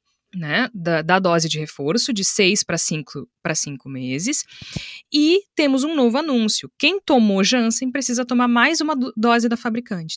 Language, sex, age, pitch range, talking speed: Portuguese, female, 20-39, 160-235 Hz, 165 wpm